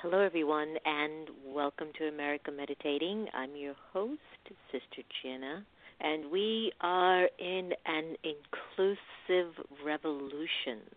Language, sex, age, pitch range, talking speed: English, female, 50-69, 135-165 Hz, 105 wpm